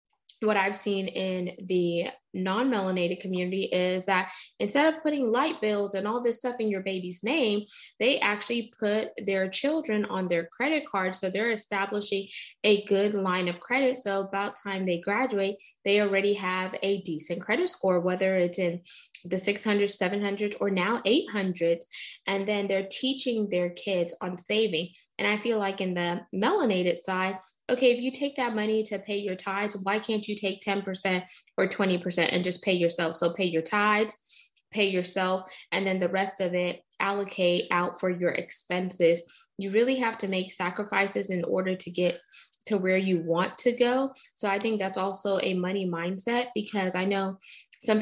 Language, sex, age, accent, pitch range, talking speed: English, female, 20-39, American, 185-215 Hz, 175 wpm